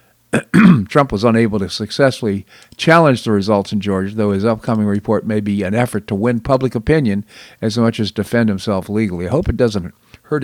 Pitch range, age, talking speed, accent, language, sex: 100-125 Hz, 50-69, 190 wpm, American, English, male